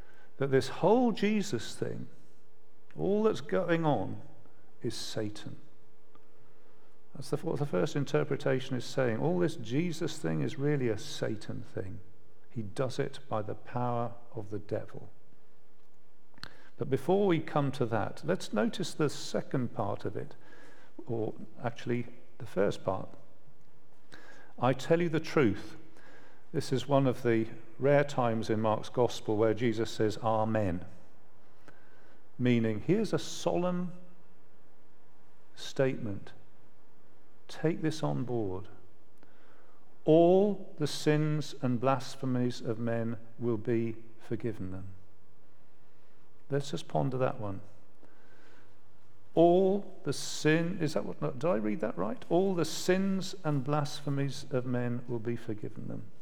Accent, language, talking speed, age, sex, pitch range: British, English, 130 wpm, 50-69, male, 110-150 Hz